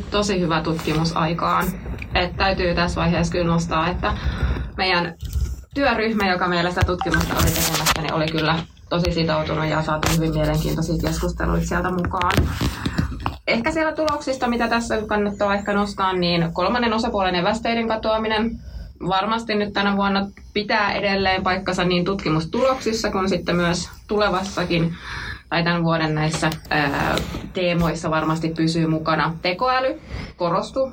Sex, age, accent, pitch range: female, 20-39, native, 160-200 Hz